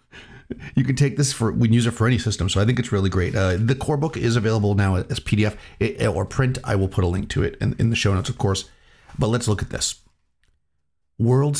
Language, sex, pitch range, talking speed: English, male, 95-125 Hz, 255 wpm